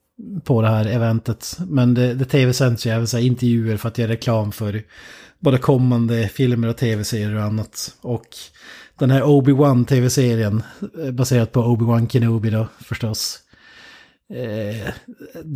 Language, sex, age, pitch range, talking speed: Swedish, male, 30-49, 110-130 Hz, 135 wpm